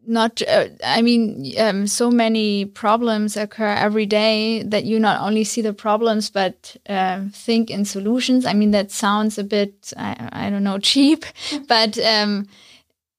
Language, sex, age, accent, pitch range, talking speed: English, female, 20-39, German, 205-225 Hz, 165 wpm